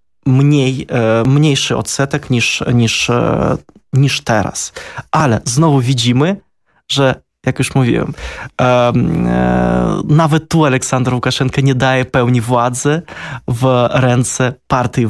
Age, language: 20-39, Polish